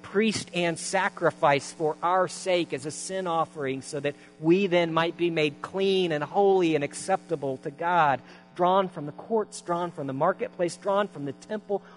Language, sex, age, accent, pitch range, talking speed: English, male, 50-69, American, 140-180 Hz, 180 wpm